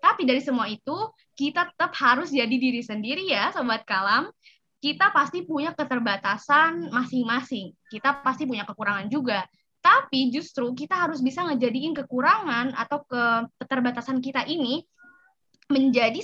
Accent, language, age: native, Indonesian, 20-39